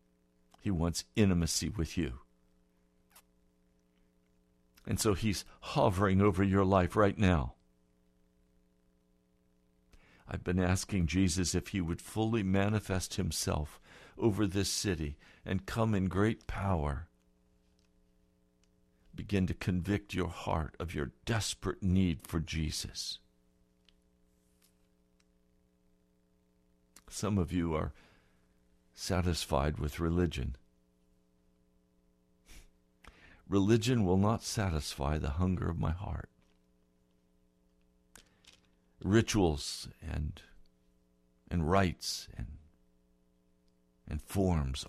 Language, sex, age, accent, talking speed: English, male, 60-79, American, 90 wpm